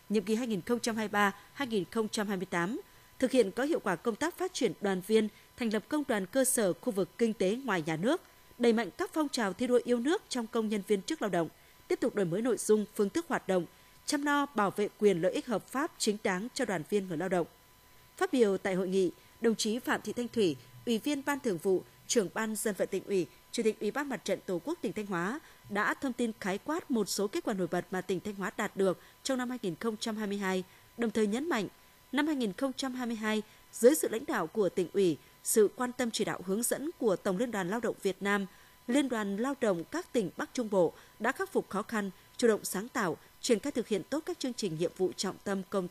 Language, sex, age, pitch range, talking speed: Vietnamese, female, 20-39, 195-255 Hz, 250 wpm